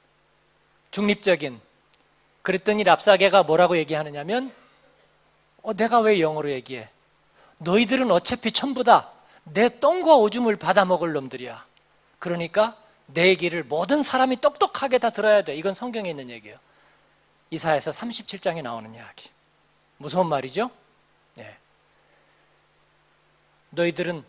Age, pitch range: 40-59, 165-235 Hz